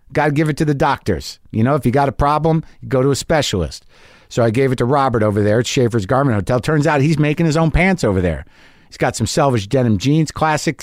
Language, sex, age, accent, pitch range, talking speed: English, male, 50-69, American, 115-160 Hz, 250 wpm